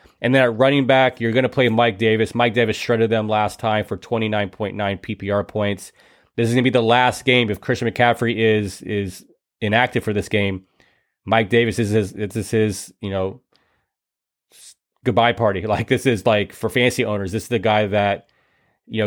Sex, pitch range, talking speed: male, 105-120 Hz, 200 wpm